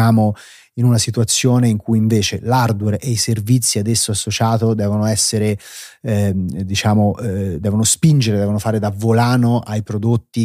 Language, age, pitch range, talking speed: Italian, 30-49, 100-115 Hz, 145 wpm